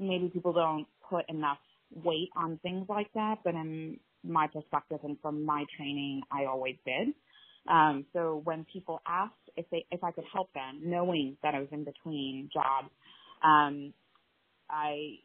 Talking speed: 165 wpm